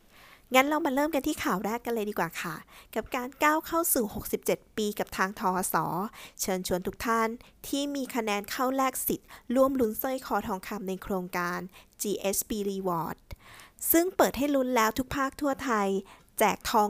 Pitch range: 190-245 Hz